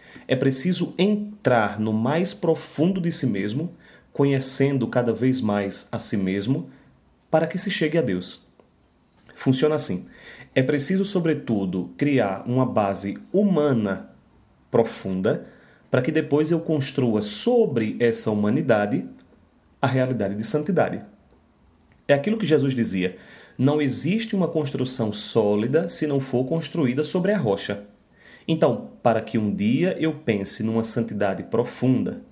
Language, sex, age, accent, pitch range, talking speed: Portuguese, male, 30-49, Brazilian, 110-165 Hz, 130 wpm